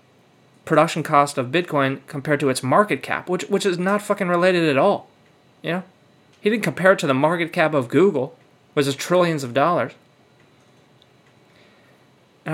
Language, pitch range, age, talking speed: English, 145-190 Hz, 30-49, 165 wpm